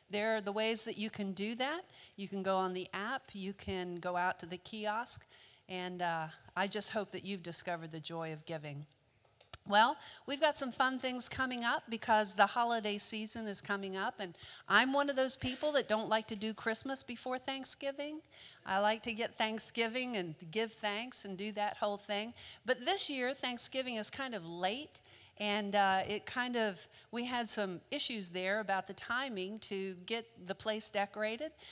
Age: 50-69